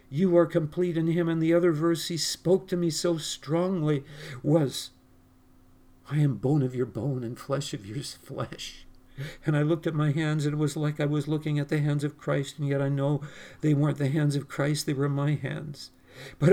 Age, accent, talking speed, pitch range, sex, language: 50-69, American, 220 wpm, 100-155 Hz, male, English